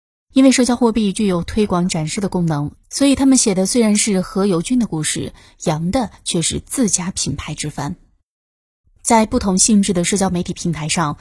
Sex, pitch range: female, 170-225 Hz